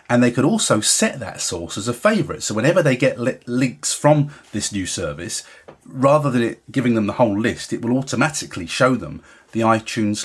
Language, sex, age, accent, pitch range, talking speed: English, male, 30-49, British, 110-140 Hz, 205 wpm